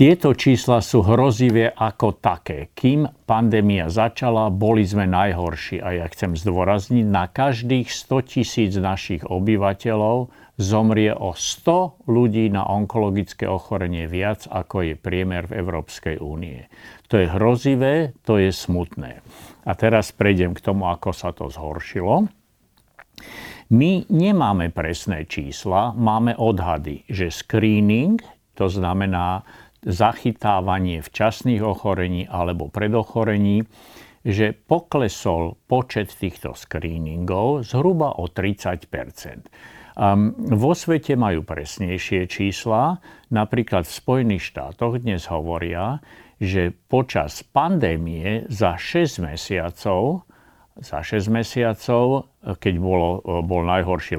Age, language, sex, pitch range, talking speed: 50-69, Slovak, male, 90-120 Hz, 110 wpm